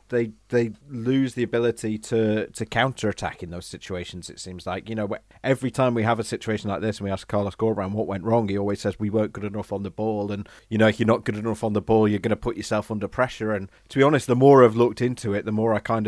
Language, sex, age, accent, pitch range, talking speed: English, male, 30-49, British, 100-115 Hz, 280 wpm